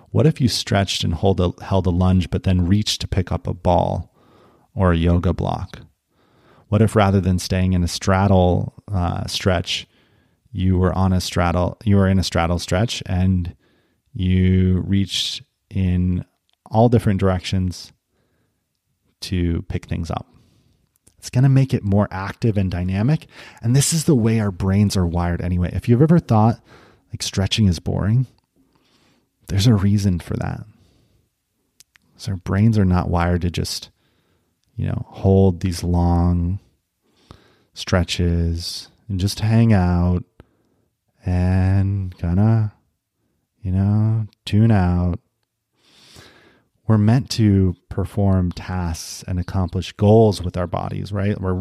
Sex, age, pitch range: male, 30-49, 90-110 Hz